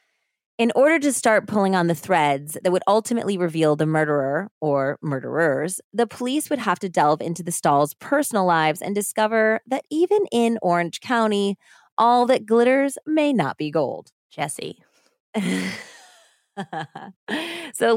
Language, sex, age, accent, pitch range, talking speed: English, female, 20-39, American, 160-225 Hz, 145 wpm